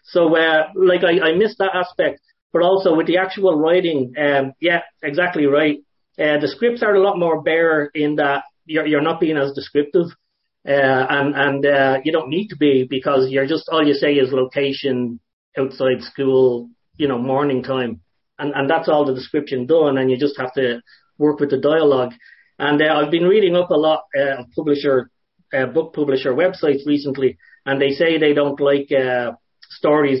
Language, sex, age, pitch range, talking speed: English, male, 30-49, 135-165 Hz, 195 wpm